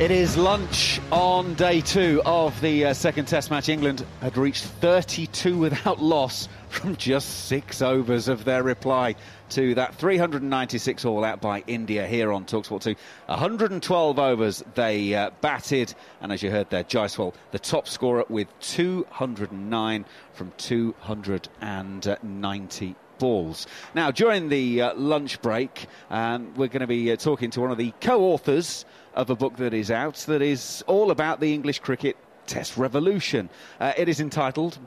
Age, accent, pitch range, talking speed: 30-49, British, 110-150 Hz, 155 wpm